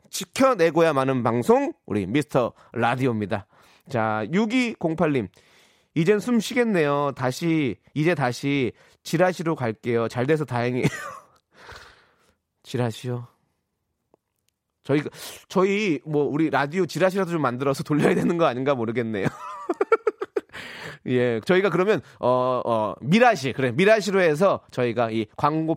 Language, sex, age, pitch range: Korean, male, 30-49, 120-195 Hz